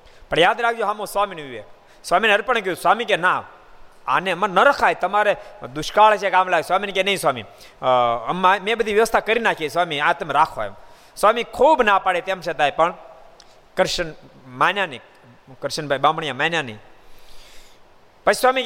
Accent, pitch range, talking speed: native, 155-215 Hz, 165 wpm